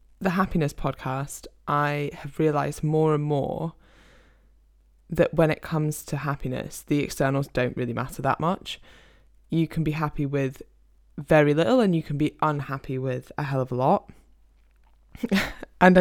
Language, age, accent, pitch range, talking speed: English, 10-29, British, 135-180 Hz, 155 wpm